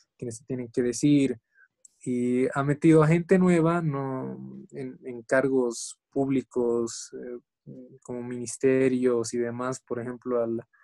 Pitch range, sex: 120-135 Hz, male